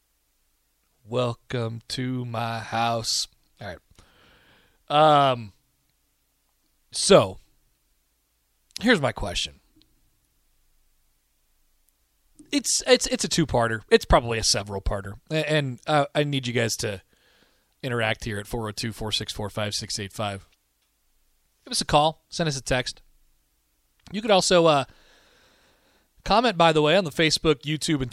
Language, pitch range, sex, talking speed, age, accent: English, 105-155 Hz, male, 110 wpm, 30-49, American